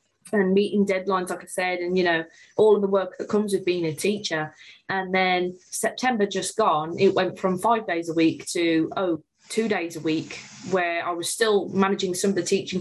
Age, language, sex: 20-39, English, female